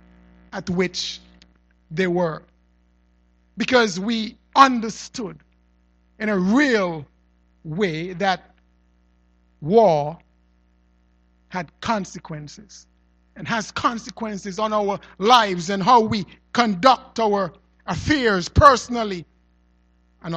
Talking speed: 85 wpm